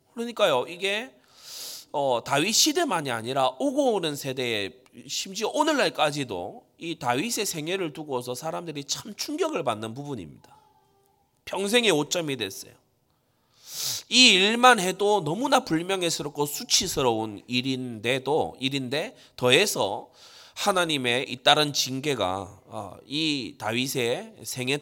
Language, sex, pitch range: Korean, male, 125-170 Hz